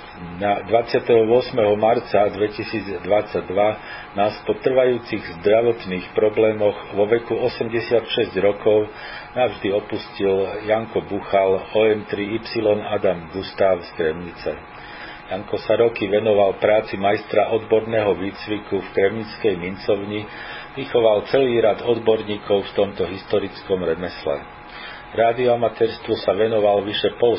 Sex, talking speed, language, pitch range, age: male, 100 wpm, Slovak, 100-115 Hz, 40-59